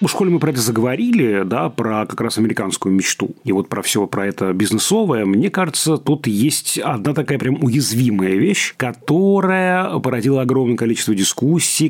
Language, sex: Russian, male